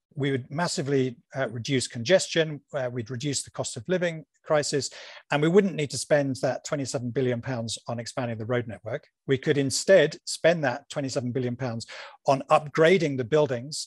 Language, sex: English, male